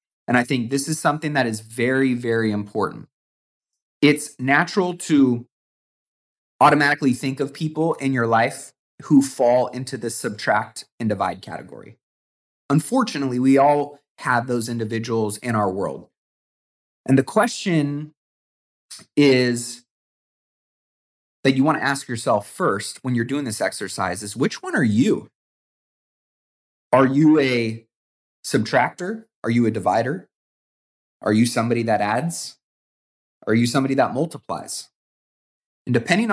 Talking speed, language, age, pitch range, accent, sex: 130 wpm, English, 30-49, 115-145 Hz, American, male